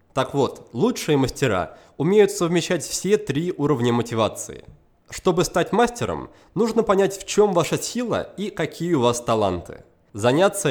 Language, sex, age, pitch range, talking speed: Russian, male, 20-39, 105-155 Hz, 140 wpm